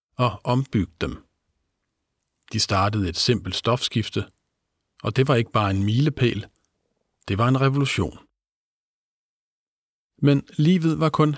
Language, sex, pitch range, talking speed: Danish, male, 105-125 Hz, 120 wpm